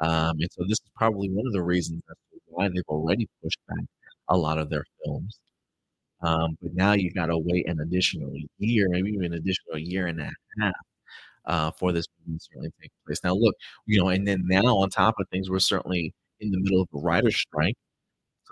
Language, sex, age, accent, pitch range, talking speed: English, male, 30-49, American, 85-95 Hz, 215 wpm